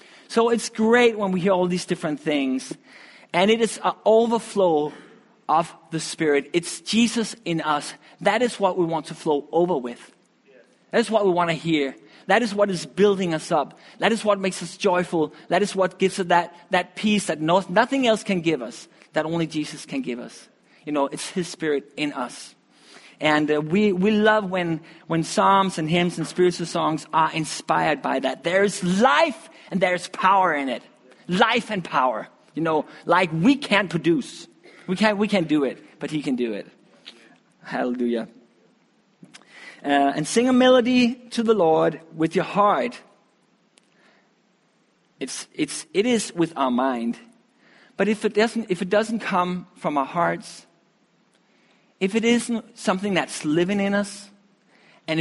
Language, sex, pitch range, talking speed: English, male, 160-210 Hz, 175 wpm